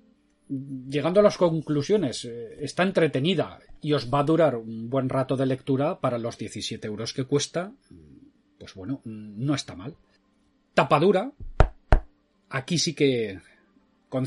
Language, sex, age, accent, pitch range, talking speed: Spanish, male, 30-49, Spanish, 125-165 Hz, 140 wpm